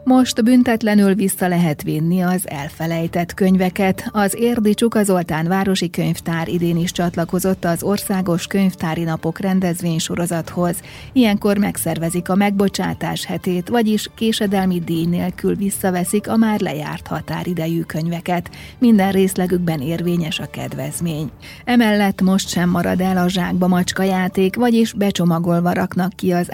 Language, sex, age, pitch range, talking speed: Hungarian, female, 30-49, 170-195 Hz, 125 wpm